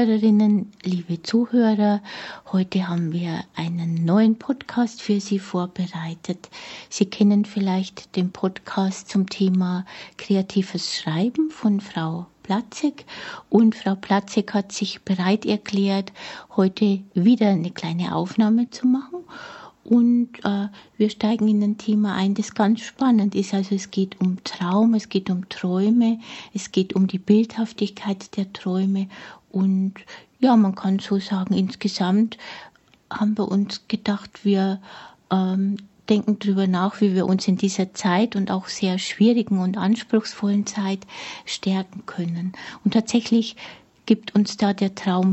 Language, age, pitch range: German, 60-79, 190-215 Hz